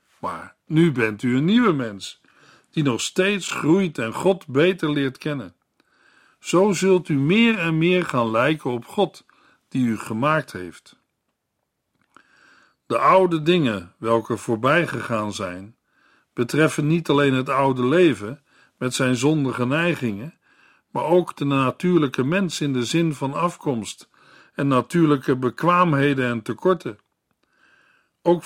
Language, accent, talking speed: Dutch, Dutch, 135 wpm